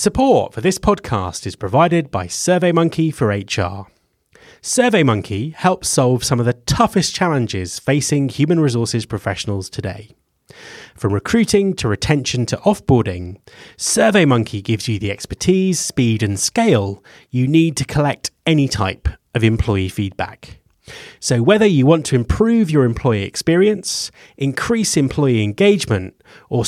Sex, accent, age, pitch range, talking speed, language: male, British, 30-49, 105-165 Hz, 135 wpm, English